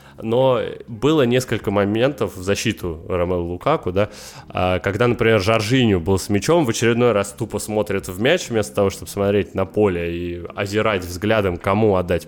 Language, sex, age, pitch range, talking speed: Russian, male, 20-39, 95-120 Hz, 160 wpm